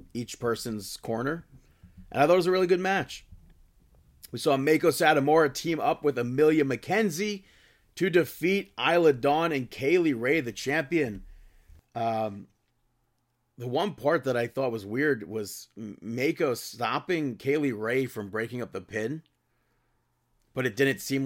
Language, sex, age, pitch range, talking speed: English, male, 30-49, 115-145 Hz, 150 wpm